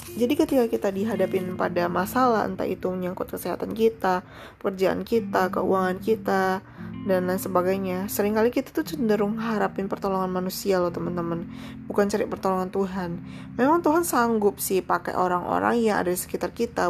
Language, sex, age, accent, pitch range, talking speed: Indonesian, female, 20-39, native, 185-230 Hz, 150 wpm